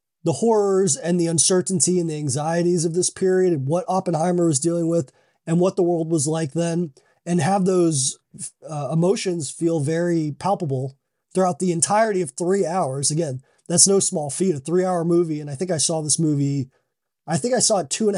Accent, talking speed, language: American, 200 wpm, English